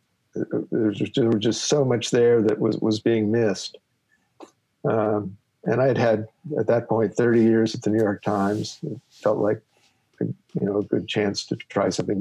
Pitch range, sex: 105-115 Hz, male